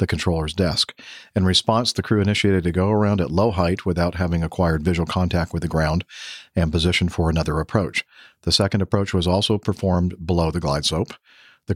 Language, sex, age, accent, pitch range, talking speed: English, male, 50-69, American, 80-95 Hz, 190 wpm